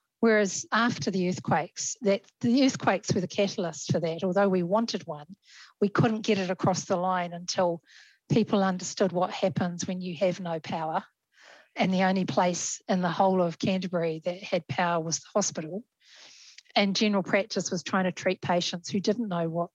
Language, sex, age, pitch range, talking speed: English, female, 40-59, 175-210 Hz, 180 wpm